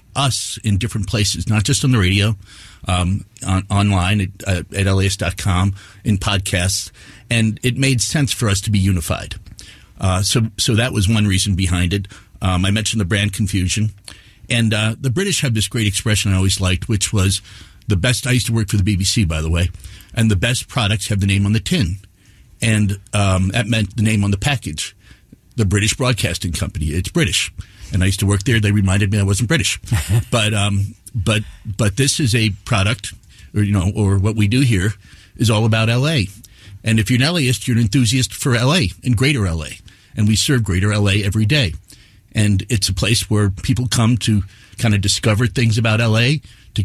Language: English